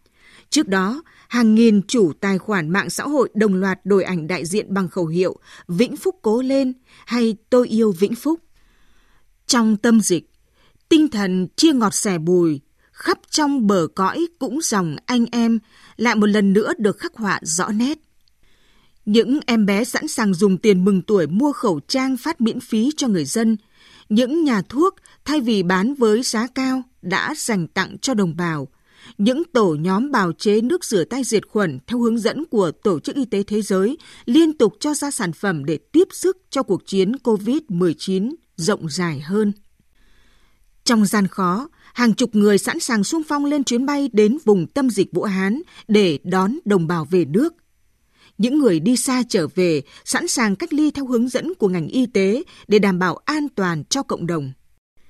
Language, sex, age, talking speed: Vietnamese, female, 20-39, 190 wpm